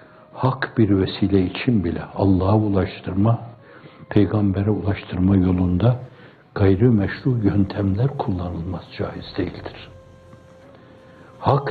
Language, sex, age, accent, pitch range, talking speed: Turkish, male, 60-79, native, 95-115 Hz, 80 wpm